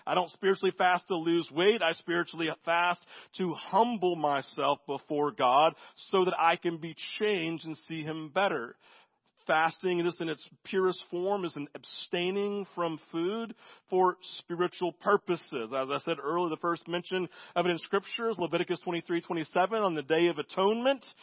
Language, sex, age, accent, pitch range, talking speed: English, male, 40-59, American, 170-245 Hz, 160 wpm